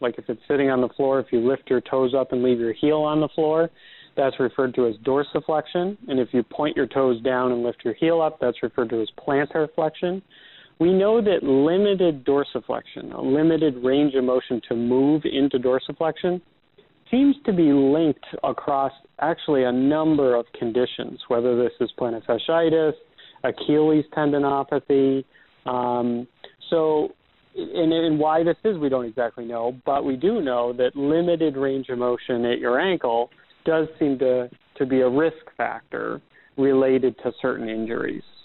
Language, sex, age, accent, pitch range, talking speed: English, male, 40-59, American, 125-155 Hz, 170 wpm